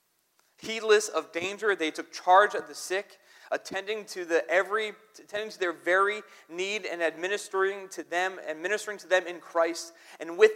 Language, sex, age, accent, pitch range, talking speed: English, male, 30-49, American, 165-200 Hz, 170 wpm